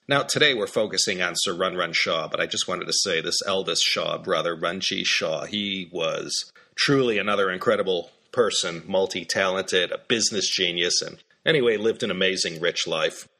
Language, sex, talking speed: English, male, 175 wpm